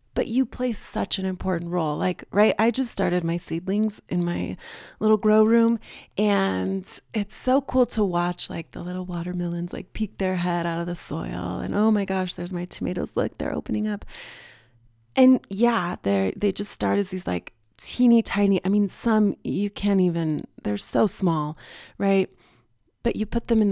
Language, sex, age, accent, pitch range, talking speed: English, female, 30-49, American, 175-225 Hz, 185 wpm